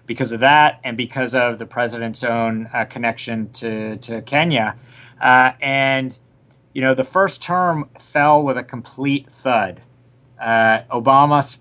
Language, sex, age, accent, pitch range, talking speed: English, male, 30-49, American, 120-145 Hz, 145 wpm